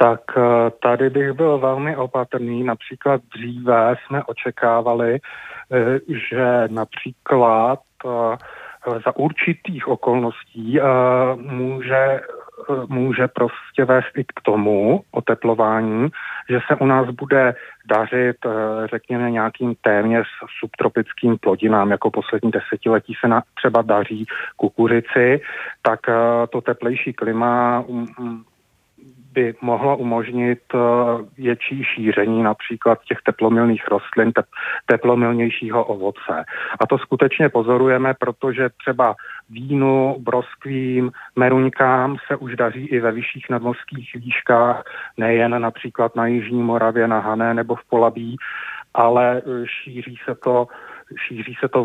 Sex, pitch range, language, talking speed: male, 115-130 Hz, Czech, 105 wpm